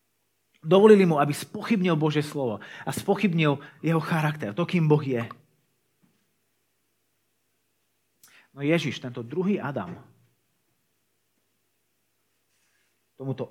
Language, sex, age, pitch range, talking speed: Slovak, male, 30-49, 110-145 Hz, 90 wpm